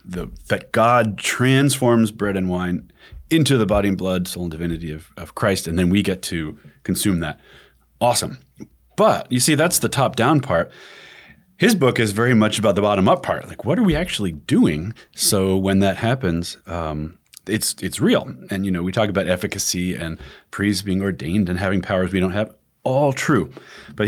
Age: 30-49